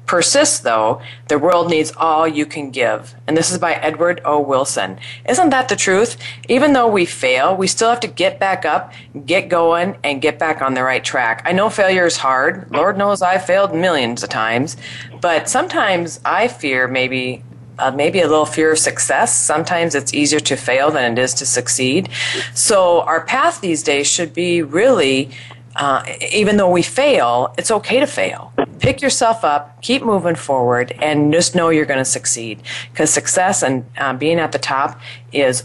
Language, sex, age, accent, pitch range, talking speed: English, female, 40-59, American, 125-180 Hz, 190 wpm